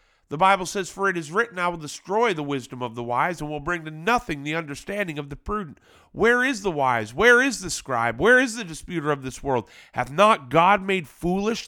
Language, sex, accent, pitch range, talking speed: English, male, American, 155-210 Hz, 230 wpm